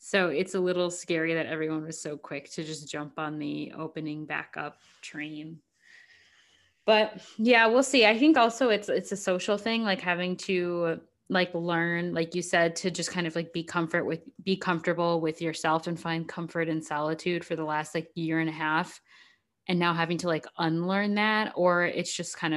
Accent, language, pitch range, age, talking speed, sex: American, English, 170-225 Hz, 10-29, 195 wpm, female